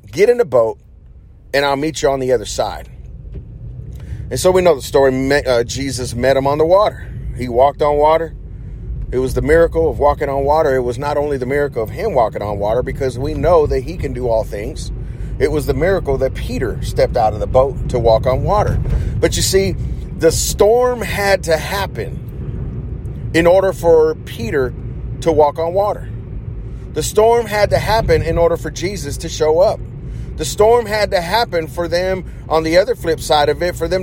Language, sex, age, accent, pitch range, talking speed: English, male, 40-59, American, 125-175 Hz, 205 wpm